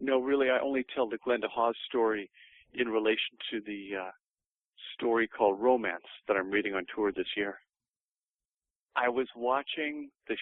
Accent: American